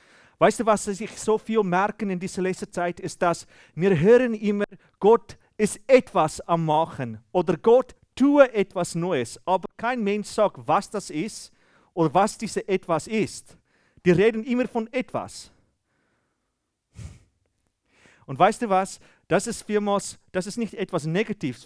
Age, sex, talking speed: 40-59, male, 155 wpm